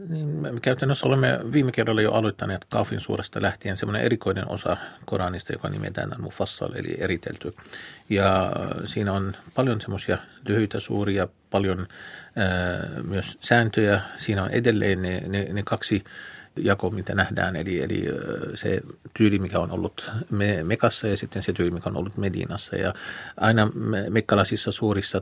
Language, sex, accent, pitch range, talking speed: Finnish, male, native, 95-110 Hz, 145 wpm